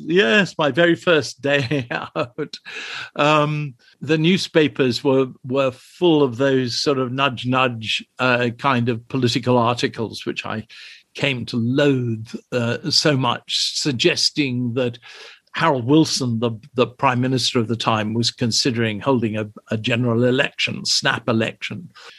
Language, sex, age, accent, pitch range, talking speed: English, male, 60-79, British, 125-155 Hz, 140 wpm